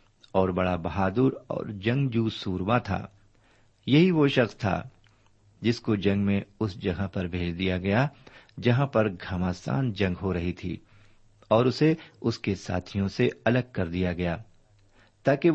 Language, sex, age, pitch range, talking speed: Urdu, male, 50-69, 95-125 Hz, 150 wpm